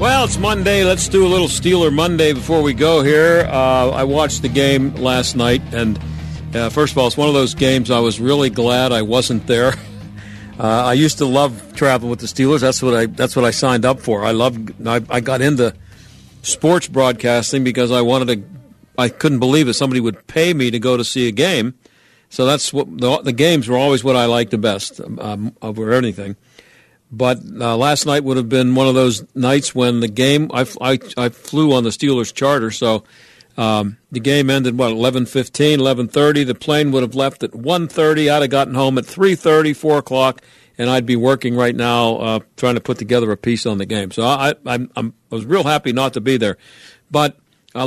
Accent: American